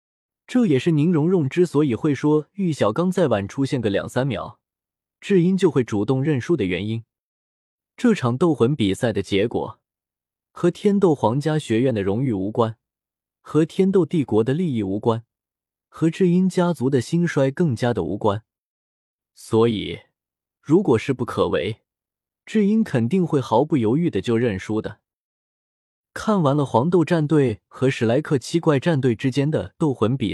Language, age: Chinese, 20-39